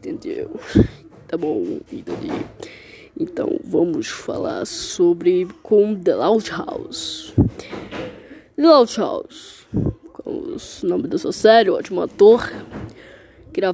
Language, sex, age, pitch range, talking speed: Portuguese, female, 10-29, 200-255 Hz, 110 wpm